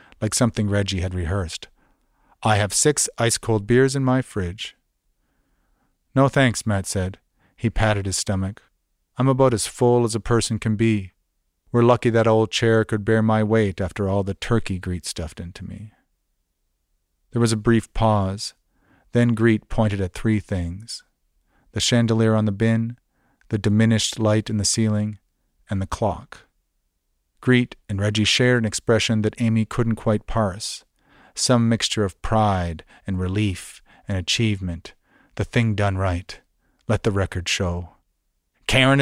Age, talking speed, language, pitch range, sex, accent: 40-59, 155 wpm, English, 95-115 Hz, male, American